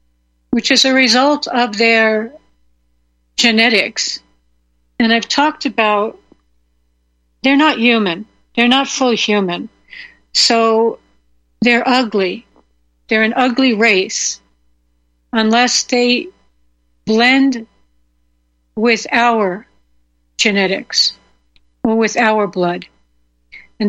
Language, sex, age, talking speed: English, female, 60-79, 90 wpm